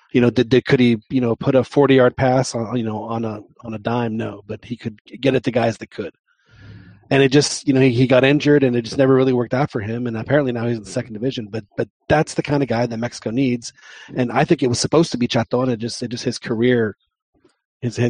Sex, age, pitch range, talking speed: male, 30-49, 115-135 Hz, 270 wpm